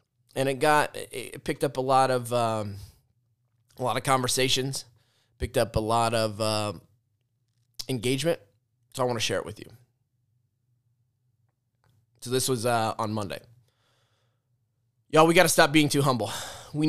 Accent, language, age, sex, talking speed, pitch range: American, English, 20-39, male, 155 wpm, 115-135 Hz